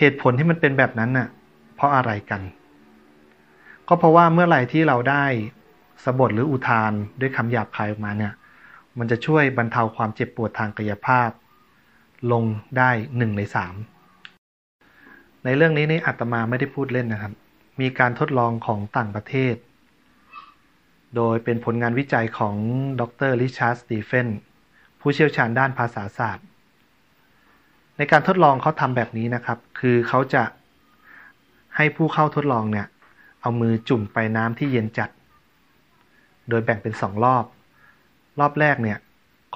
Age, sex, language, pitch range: 30-49, male, Thai, 110-135 Hz